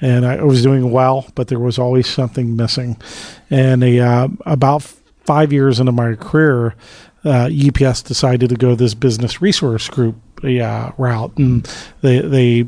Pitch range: 120-140 Hz